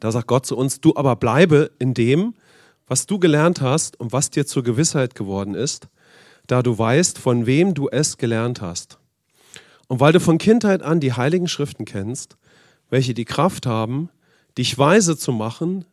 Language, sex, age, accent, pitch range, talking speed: English, male, 40-59, German, 120-160 Hz, 180 wpm